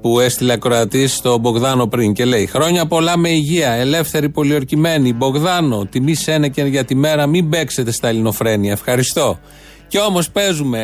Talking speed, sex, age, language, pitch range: 160 wpm, male, 30-49, Greek, 130-170 Hz